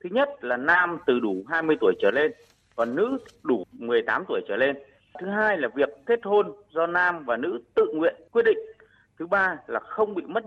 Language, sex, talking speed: Vietnamese, male, 210 wpm